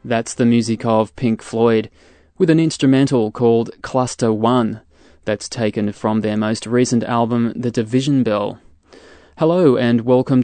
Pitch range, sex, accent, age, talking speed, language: 110-130 Hz, male, Australian, 20-39, 145 wpm, English